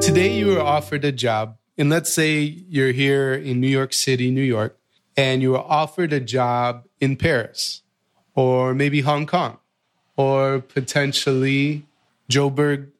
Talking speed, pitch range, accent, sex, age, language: 150 wpm, 125-150 Hz, American, male, 30-49, English